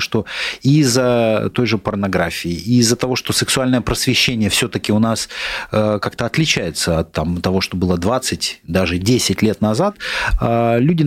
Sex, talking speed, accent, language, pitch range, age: male, 140 wpm, native, Russian, 105-130 Hz, 30-49